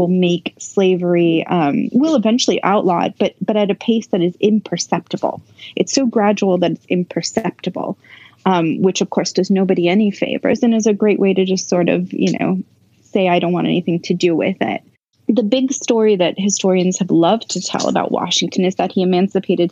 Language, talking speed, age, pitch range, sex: English, 200 wpm, 20-39, 175-215 Hz, female